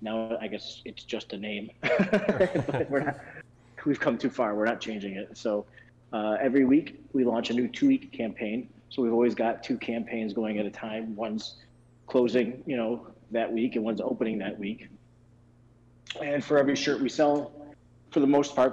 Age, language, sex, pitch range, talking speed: 30-49, English, male, 110-125 Hz, 185 wpm